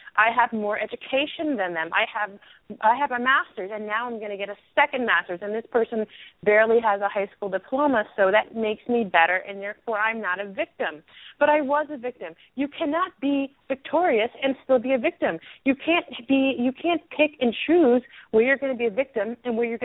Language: English